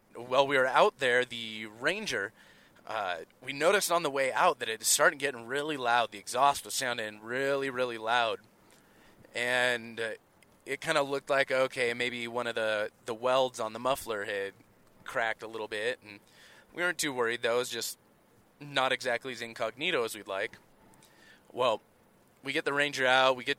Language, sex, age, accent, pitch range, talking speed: English, male, 20-39, American, 115-140 Hz, 185 wpm